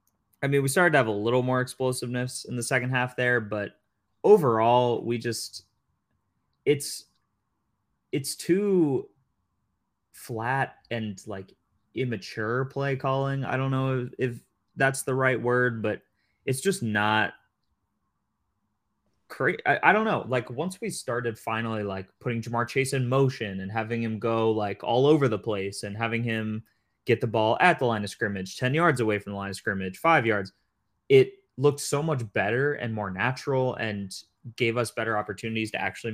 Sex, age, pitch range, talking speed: male, 20-39, 105-130 Hz, 170 wpm